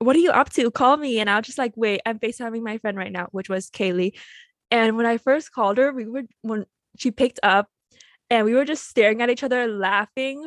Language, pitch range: English, 195-235 Hz